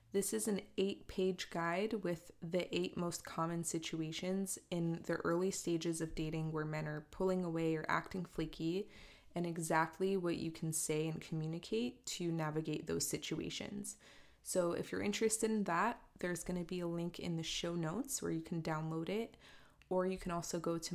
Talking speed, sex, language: 185 wpm, female, English